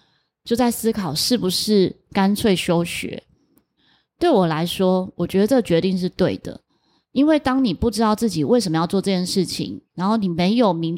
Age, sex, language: 20-39, female, Chinese